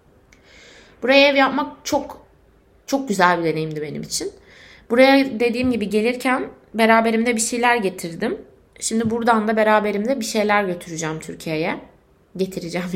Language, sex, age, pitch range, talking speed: Turkish, female, 20-39, 195-270 Hz, 125 wpm